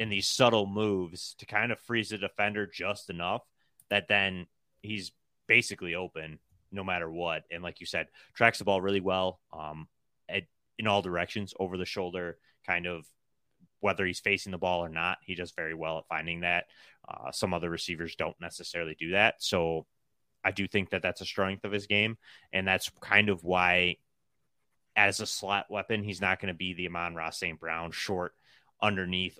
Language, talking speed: English, 190 wpm